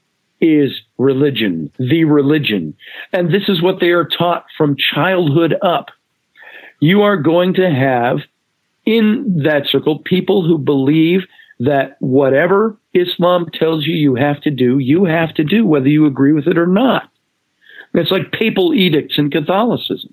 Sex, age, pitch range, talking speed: male, 50-69, 150-195 Hz, 150 wpm